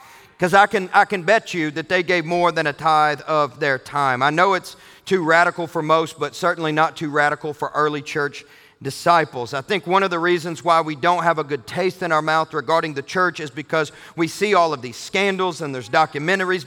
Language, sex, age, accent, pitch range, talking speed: English, male, 40-59, American, 155-195 Hz, 225 wpm